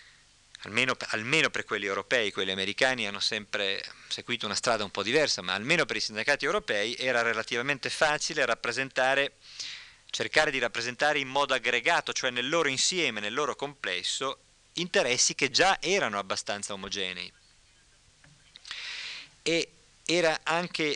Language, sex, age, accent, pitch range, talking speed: Spanish, male, 40-59, Italian, 120-155 Hz, 135 wpm